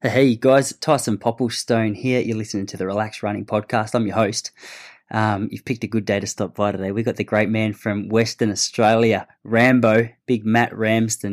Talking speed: 200 wpm